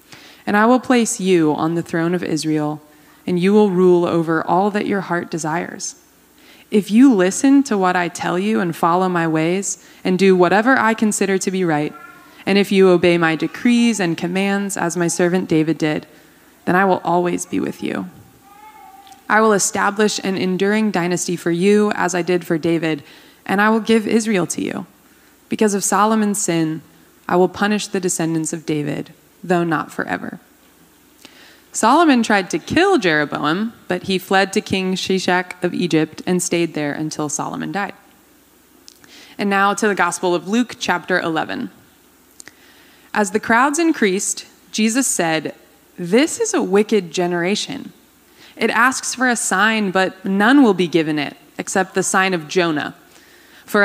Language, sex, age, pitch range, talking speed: English, female, 20-39, 175-220 Hz, 165 wpm